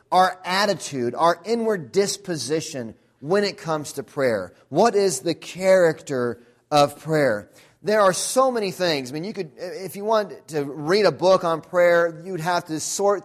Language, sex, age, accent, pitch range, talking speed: English, male, 30-49, American, 145-185 Hz, 170 wpm